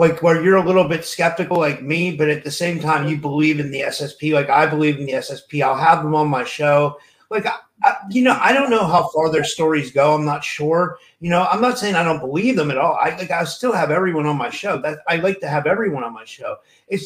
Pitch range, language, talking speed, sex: 140-185 Hz, English, 270 wpm, male